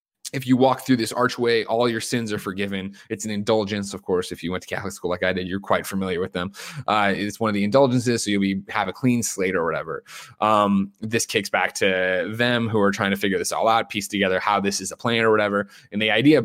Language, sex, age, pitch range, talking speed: English, male, 20-39, 100-120 Hz, 260 wpm